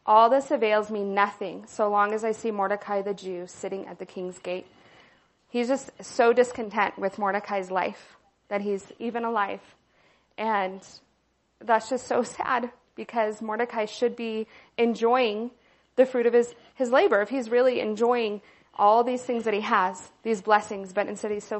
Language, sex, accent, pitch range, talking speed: English, female, American, 195-225 Hz, 170 wpm